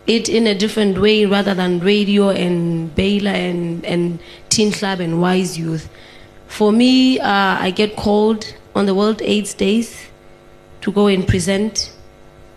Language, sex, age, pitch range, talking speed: English, female, 20-39, 180-205 Hz, 155 wpm